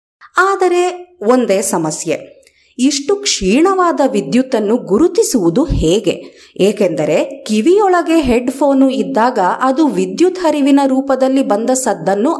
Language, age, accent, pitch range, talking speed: Kannada, 30-49, native, 235-320 Hz, 85 wpm